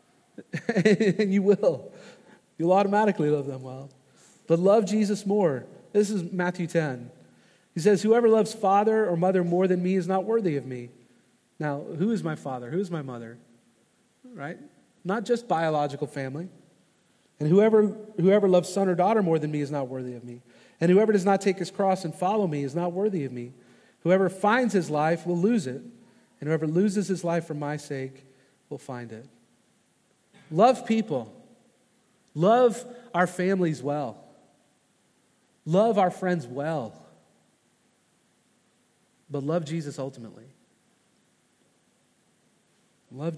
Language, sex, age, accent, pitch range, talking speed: English, male, 40-59, American, 155-210 Hz, 150 wpm